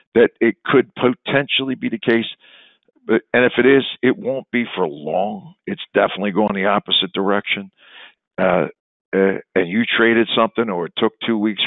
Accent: American